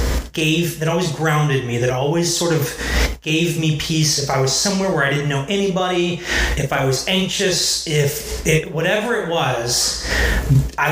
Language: English